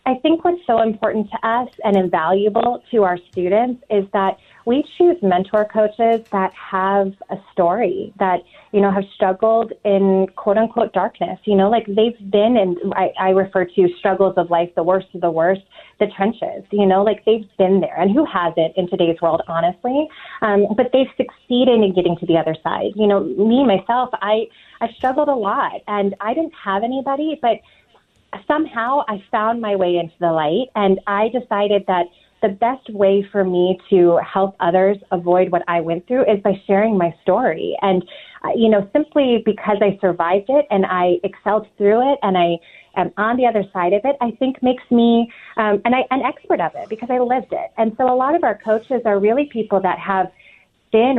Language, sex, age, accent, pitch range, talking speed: English, female, 30-49, American, 190-240 Hz, 200 wpm